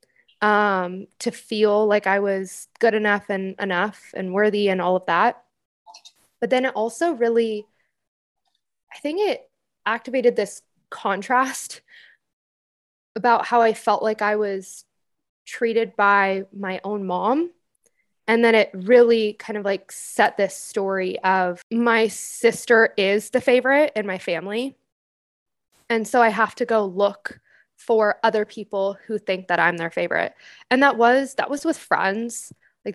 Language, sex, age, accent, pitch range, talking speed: English, female, 20-39, American, 195-230 Hz, 150 wpm